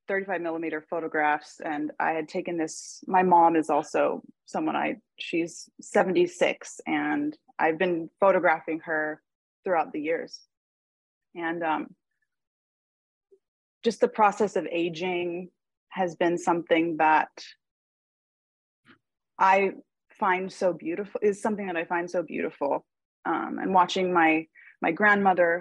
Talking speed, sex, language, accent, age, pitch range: 120 wpm, female, English, American, 20-39, 165-215 Hz